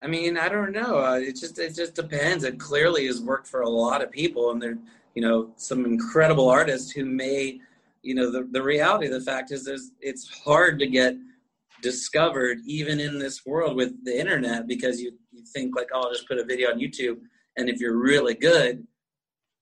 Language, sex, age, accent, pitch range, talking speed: English, male, 30-49, American, 120-145 Hz, 210 wpm